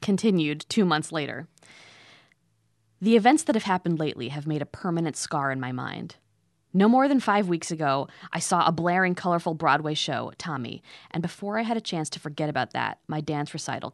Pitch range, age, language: 145-180 Hz, 20-39, English